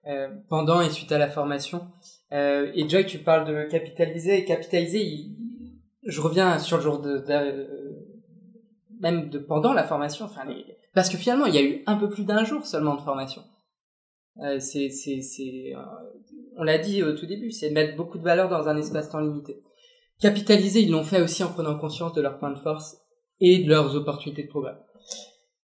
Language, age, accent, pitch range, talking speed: French, 20-39, French, 145-195 Hz, 205 wpm